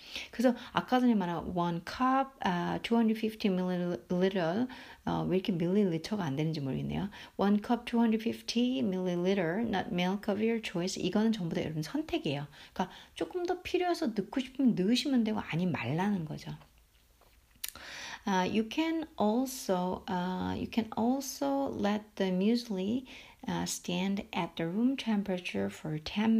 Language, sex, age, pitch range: Korean, female, 60-79, 175-240 Hz